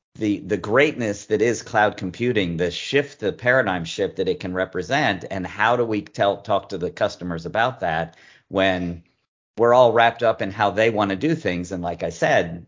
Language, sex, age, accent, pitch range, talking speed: English, male, 50-69, American, 85-110 Hz, 205 wpm